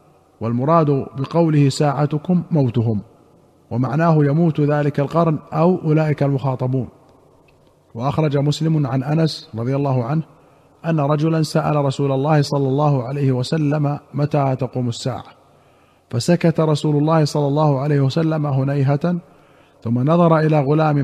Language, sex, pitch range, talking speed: Arabic, male, 135-150 Hz, 120 wpm